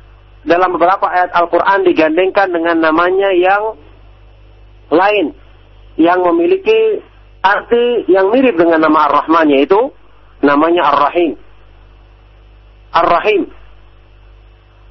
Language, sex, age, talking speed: English, male, 50-69, 80 wpm